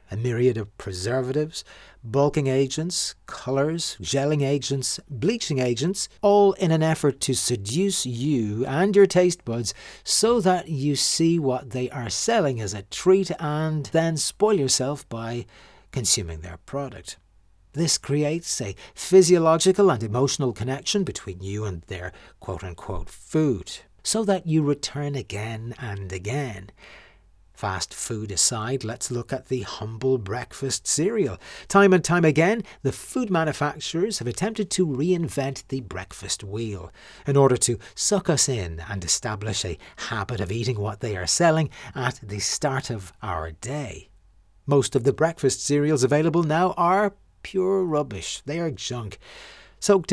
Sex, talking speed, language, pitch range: male, 145 wpm, English, 105-155 Hz